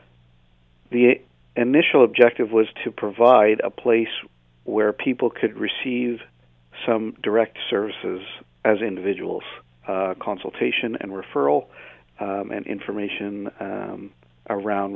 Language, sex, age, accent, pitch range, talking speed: English, male, 50-69, American, 90-105 Hz, 105 wpm